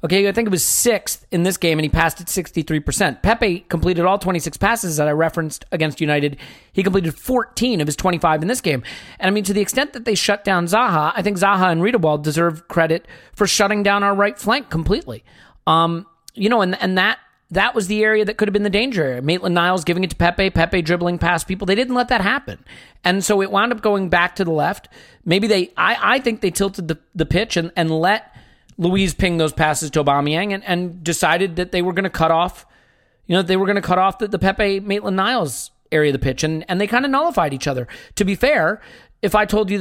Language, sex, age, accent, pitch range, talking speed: English, male, 40-59, American, 170-220 Hz, 240 wpm